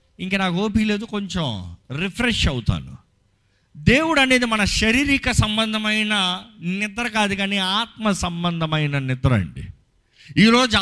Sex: male